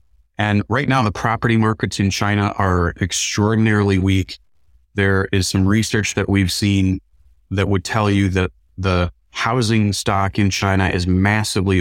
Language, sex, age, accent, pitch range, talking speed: English, male, 30-49, American, 90-105 Hz, 150 wpm